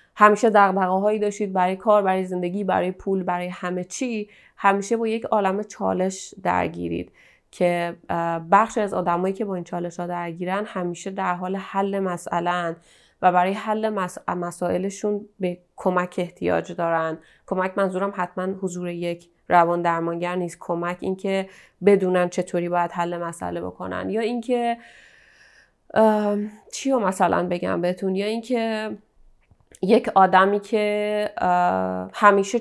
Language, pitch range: Persian, 175-210 Hz